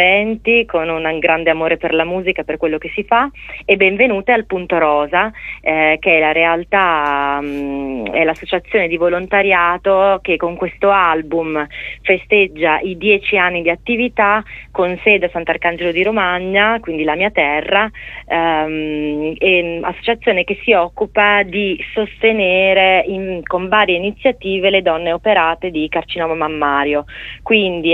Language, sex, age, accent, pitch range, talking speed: Italian, female, 30-49, native, 165-195 Hz, 140 wpm